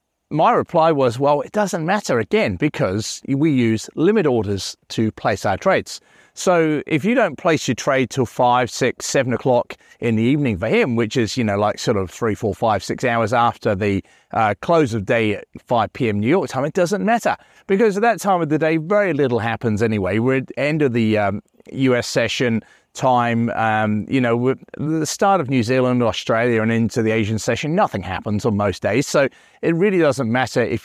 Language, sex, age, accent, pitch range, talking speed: English, male, 40-59, British, 110-145 Hz, 210 wpm